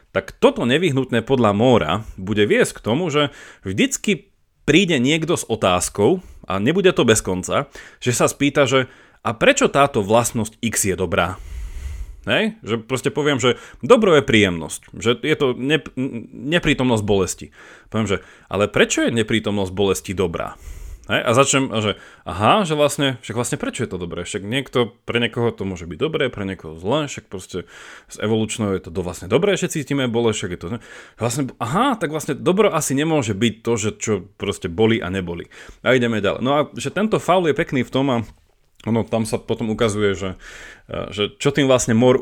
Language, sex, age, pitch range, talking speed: Slovak, male, 30-49, 100-135 Hz, 185 wpm